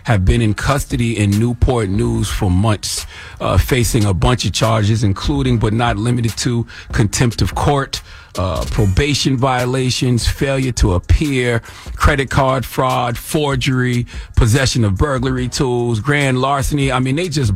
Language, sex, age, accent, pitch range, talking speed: English, male, 40-59, American, 100-145 Hz, 145 wpm